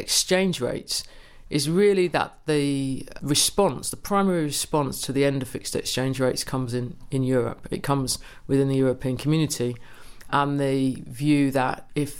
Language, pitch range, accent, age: English, 125-140 Hz, British, 50-69